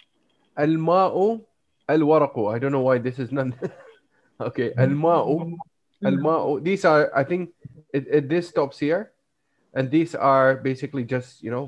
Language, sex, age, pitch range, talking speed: Malay, male, 30-49, 130-175 Hz, 140 wpm